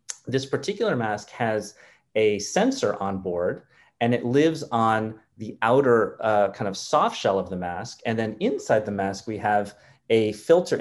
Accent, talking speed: American, 170 wpm